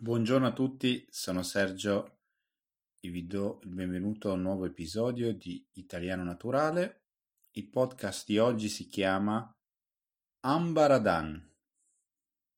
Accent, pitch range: native, 90-120 Hz